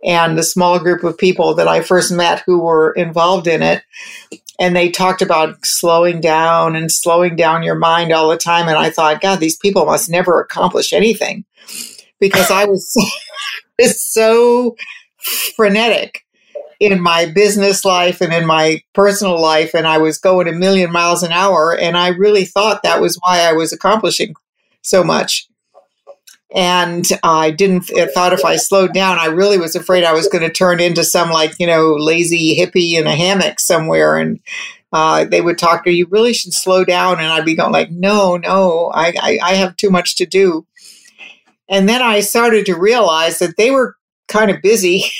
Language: English